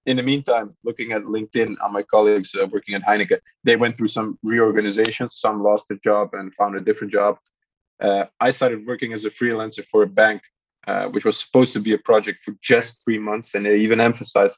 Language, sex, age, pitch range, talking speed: Polish, male, 20-39, 105-130 Hz, 215 wpm